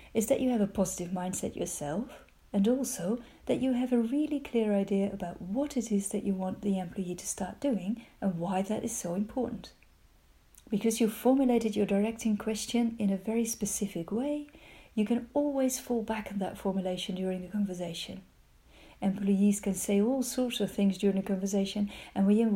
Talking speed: 185 wpm